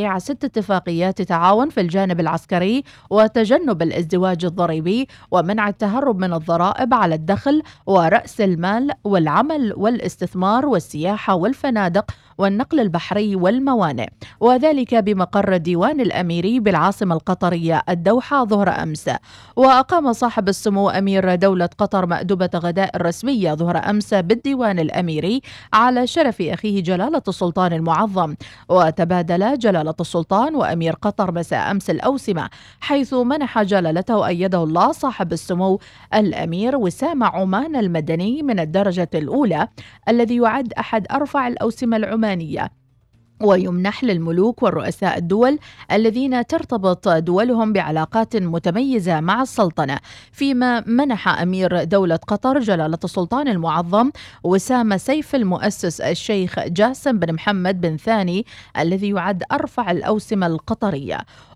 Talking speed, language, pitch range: 110 wpm, Arabic, 175-235 Hz